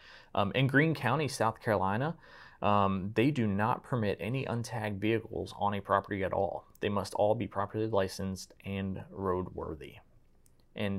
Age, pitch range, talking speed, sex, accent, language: 30-49, 95-115 Hz, 155 wpm, male, American, English